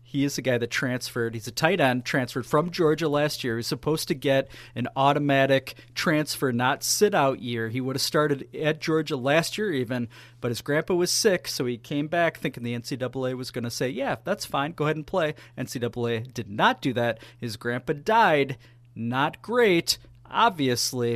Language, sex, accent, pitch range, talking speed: English, male, American, 120-155 Hz, 195 wpm